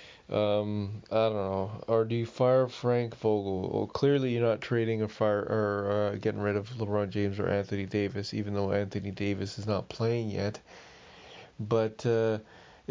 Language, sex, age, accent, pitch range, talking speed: English, male, 20-39, American, 105-125 Hz, 170 wpm